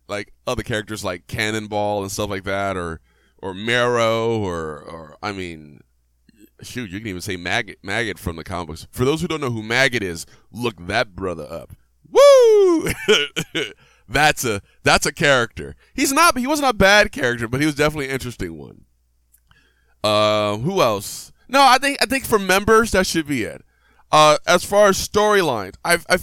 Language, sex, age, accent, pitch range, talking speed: English, male, 20-39, American, 100-140 Hz, 185 wpm